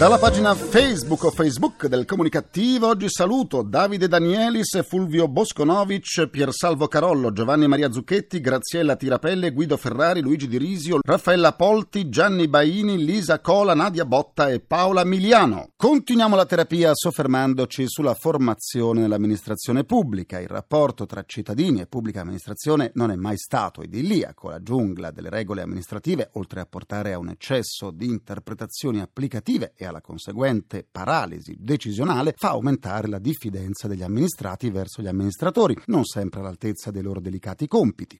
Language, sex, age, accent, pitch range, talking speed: Italian, male, 40-59, native, 100-160 Hz, 145 wpm